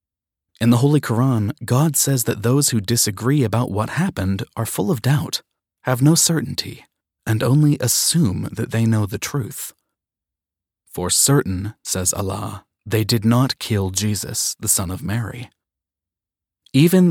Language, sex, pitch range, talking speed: English, male, 95-130 Hz, 145 wpm